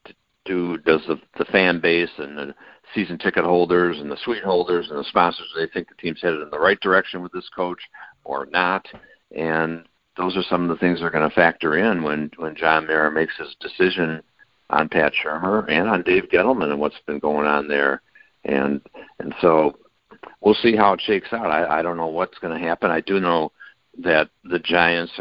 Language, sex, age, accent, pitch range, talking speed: English, male, 60-79, American, 75-85 Hz, 200 wpm